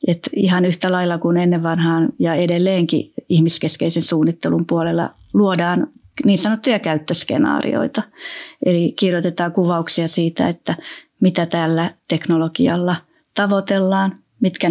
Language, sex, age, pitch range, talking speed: Finnish, female, 30-49, 165-200 Hz, 100 wpm